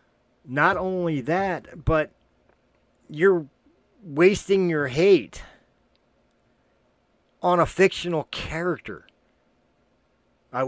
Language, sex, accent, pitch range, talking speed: English, male, American, 115-145 Hz, 75 wpm